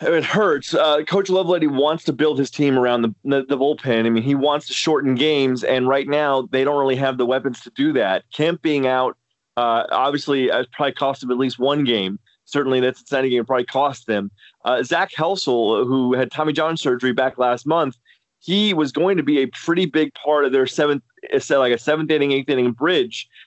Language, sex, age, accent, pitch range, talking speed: English, male, 30-49, American, 130-185 Hz, 225 wpm